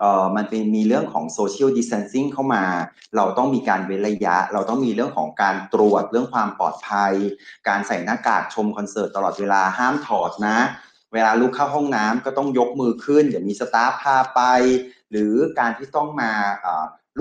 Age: 30-49